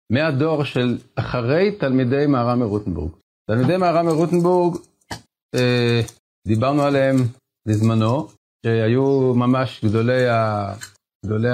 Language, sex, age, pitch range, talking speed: Hebrew, male, 50-69, 115-150 Hz, 80 wpm